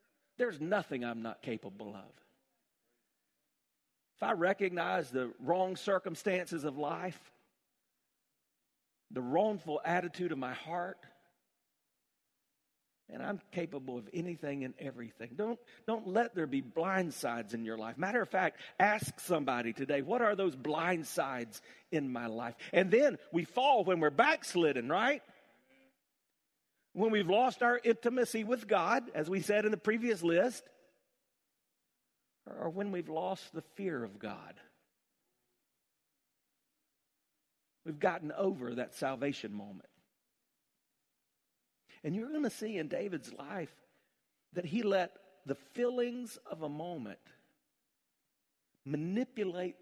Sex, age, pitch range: male, 50-69, 140-210 Hz